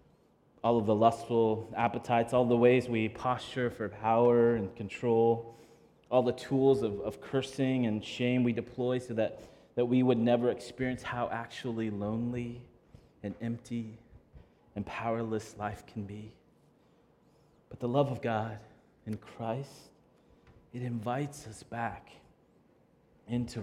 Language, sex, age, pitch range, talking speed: English, male, 30-49, 110-135 Hz, 135 wpm